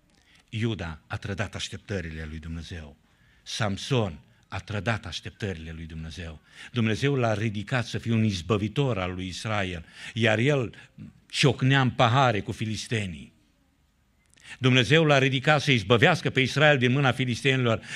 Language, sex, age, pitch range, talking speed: Romanian, male, 60-79, 105-170 Hz, 130 wpm